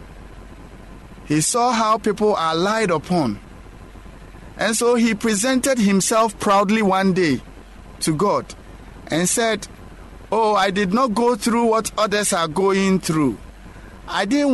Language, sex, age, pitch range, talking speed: English, male, 50-69, 145-215 Hz, 130 wpm